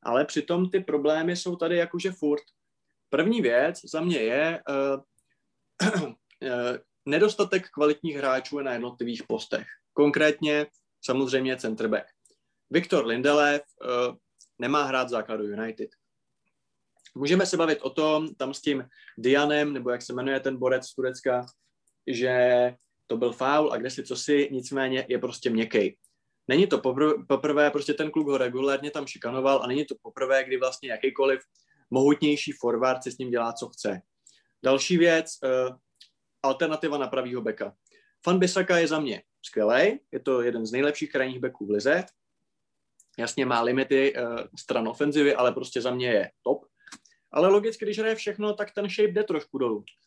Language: Czech